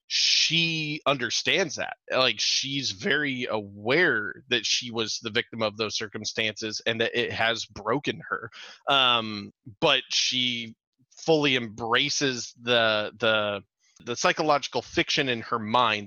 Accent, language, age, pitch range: American, English, 30-49, 115-155 Hz